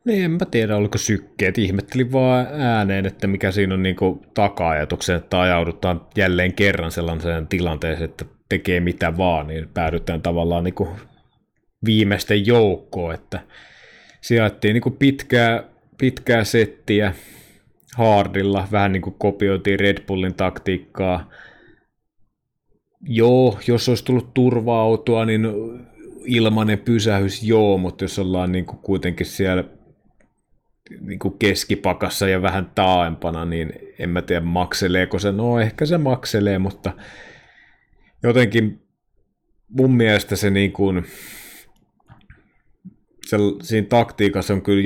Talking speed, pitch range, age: 110 wpm, 90-115 Hz, 30-49